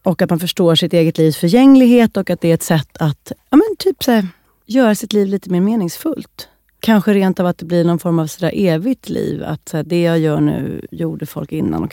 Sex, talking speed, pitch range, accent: female, 205 wpm, 160-225 Hz, native